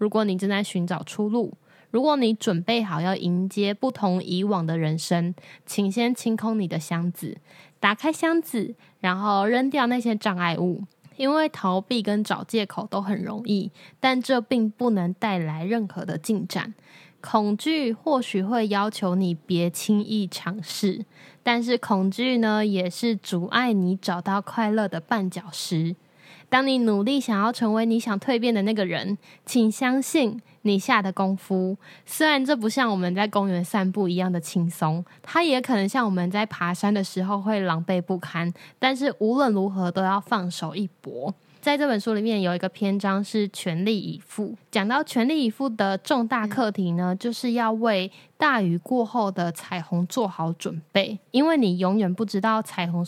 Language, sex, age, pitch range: Chinese, female, 10-29, 180-230 Hz